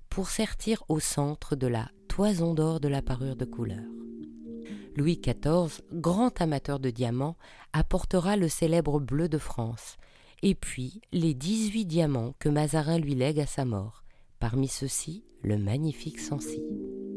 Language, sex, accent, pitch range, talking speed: French, female, French, 130-185 Hz, 145 wpm